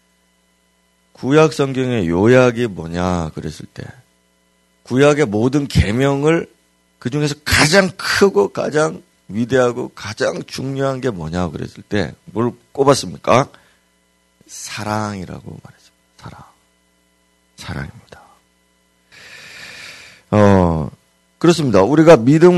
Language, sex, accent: Korean, male, native